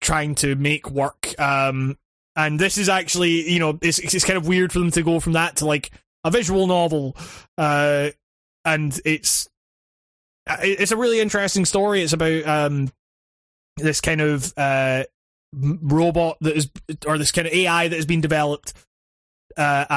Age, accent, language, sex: 20-39, British, English, male